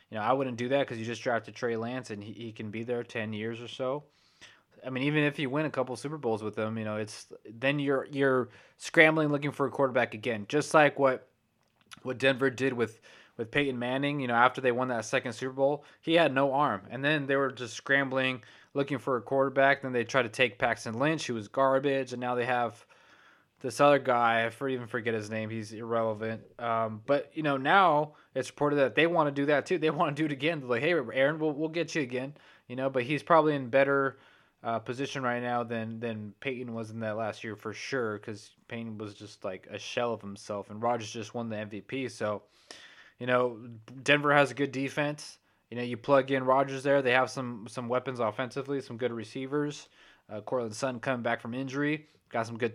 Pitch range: 115-140 Hz